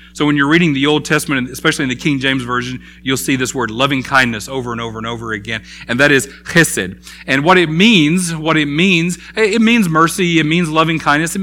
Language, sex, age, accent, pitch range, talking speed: English, male, 40-59, American, 130-180 Hz, 230 wpm